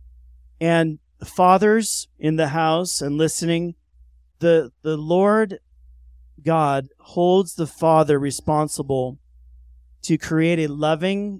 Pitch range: 130-160 Hz